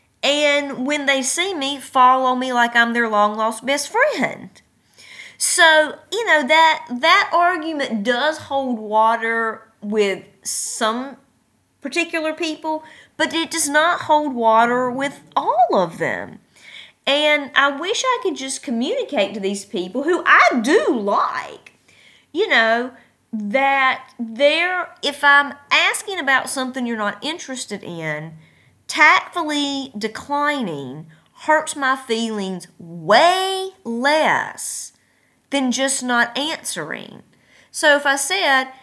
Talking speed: 120 wpm